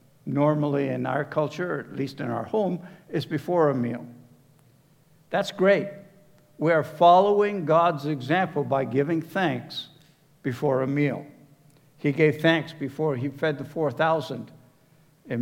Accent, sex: American, male